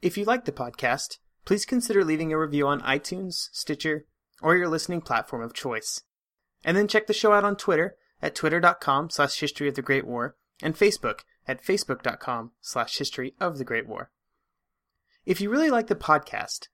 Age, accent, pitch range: 30-49, American, 135-185 Hz